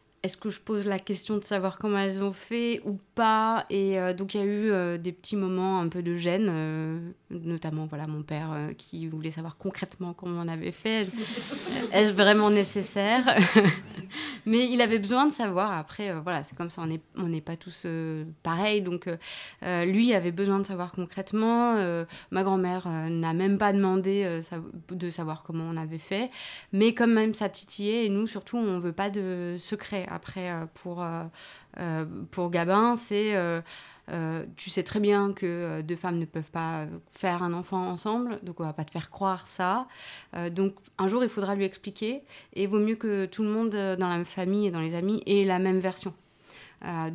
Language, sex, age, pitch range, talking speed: French, female, 30-49, 170-205 Hz, 205 wpm